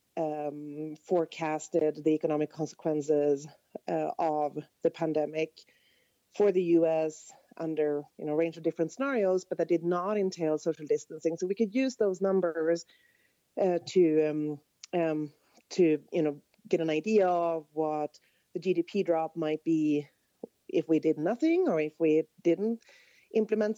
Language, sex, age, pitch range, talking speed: English, female, 30-49, 160-200 Hz, 140 wpm